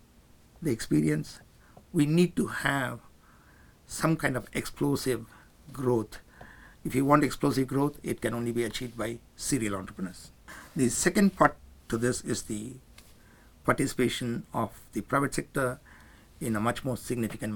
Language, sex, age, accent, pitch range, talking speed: English, male, 60-79, Indian, 110-140 Hz, 140 wpm